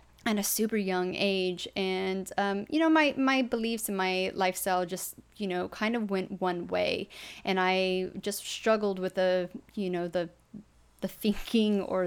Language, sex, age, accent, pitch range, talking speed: English, female, 20-39, American, 180-200 Hz, 175 wpm